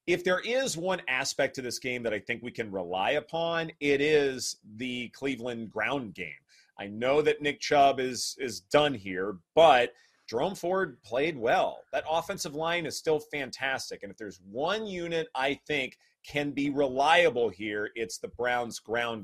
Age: 30-49